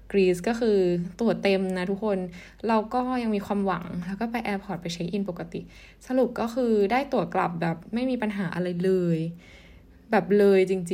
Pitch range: 175-220 Hz